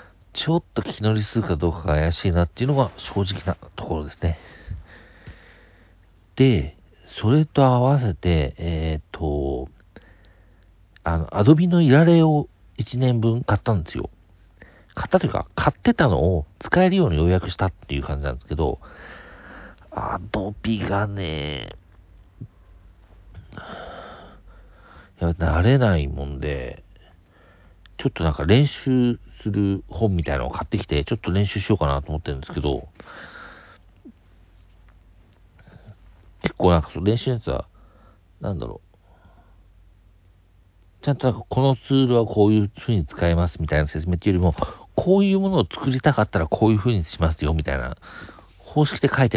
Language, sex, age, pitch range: Japanese, male, 50-69, 85-115 Hz